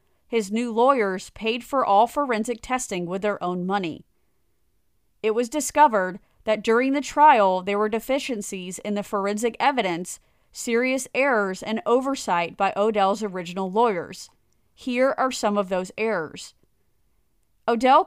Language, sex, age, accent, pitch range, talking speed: English, female, 30-49, American, 195-245 Hz, 135 wpm